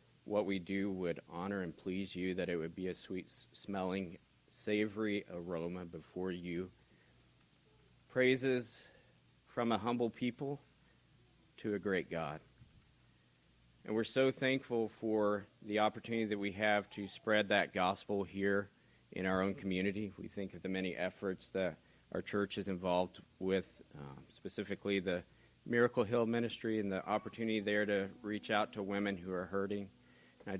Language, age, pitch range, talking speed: English, 40-59, 95-110 Hz, 150 wpm